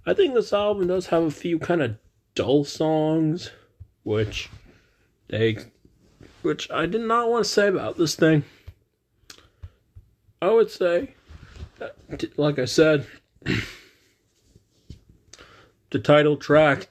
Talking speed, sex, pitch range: 115 wpm, male, 110-140 Hz